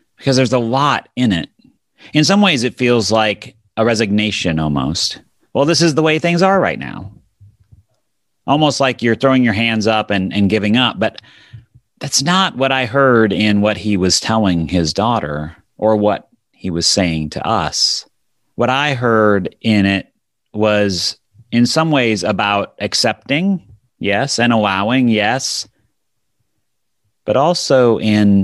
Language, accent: English, American